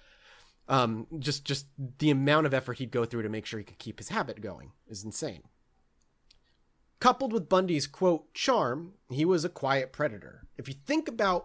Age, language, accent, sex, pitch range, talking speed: 30-49, English, American, male, 135-185 Hz, 185 wpm